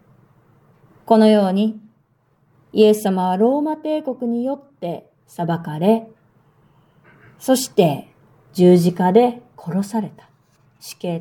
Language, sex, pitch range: Japanese, female, 150-220 Hz